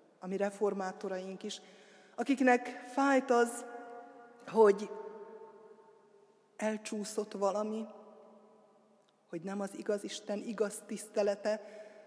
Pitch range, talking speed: 195-220 Hz, 80 wpm